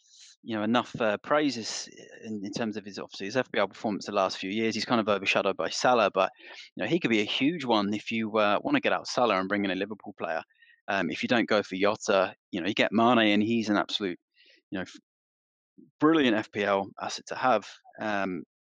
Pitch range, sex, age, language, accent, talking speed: 105-130 Hz, male, 20-39, English, British, 225 wpm